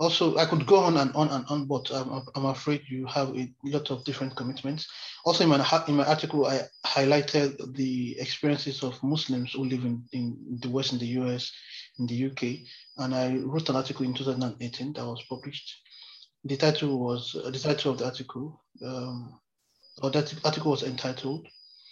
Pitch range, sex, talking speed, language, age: 125-145 Hz, male, 190 wpm, English, 30-49